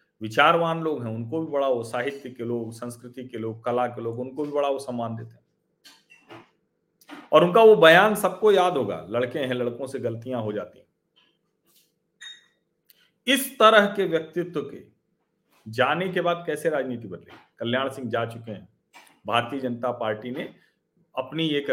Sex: male